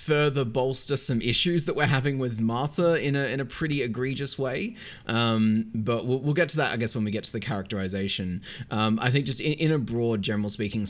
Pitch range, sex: 105-150 Hz, male